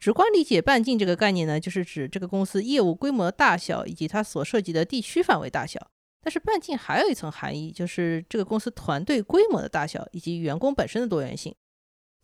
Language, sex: Chinese, female